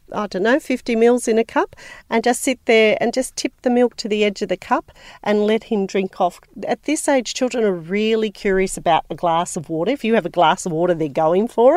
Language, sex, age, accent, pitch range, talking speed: English, female, 40-59, Australian, 170-220 Hz, 255 wpm